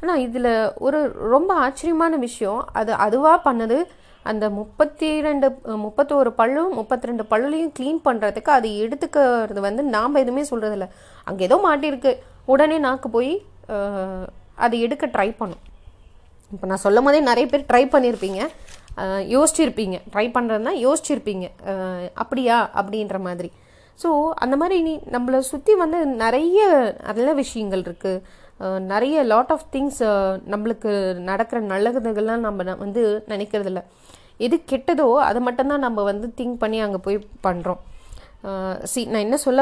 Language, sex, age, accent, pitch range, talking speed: Tamil, female, 30-49, native, 200-275 Hz, 130 wpm